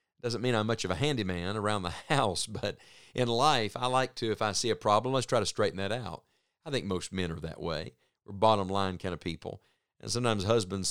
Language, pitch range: English, 95-120 Hz